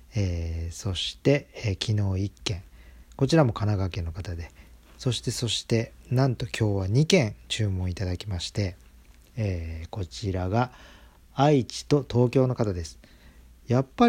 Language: Japanese